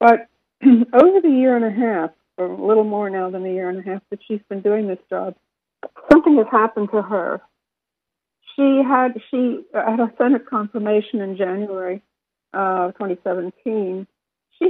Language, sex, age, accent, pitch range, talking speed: English, female, 60-79, American, 190-235 Hz, 160 wpm